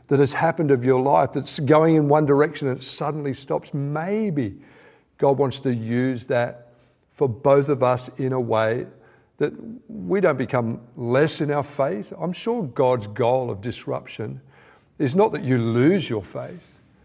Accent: Australian